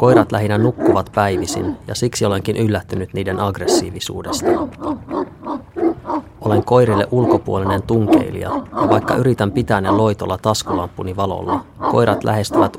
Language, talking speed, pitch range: Finnish, 115 wpm, 95-125 Hz